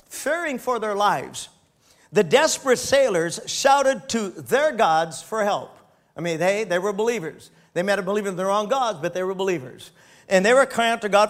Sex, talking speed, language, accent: male, 195 wpm, English, American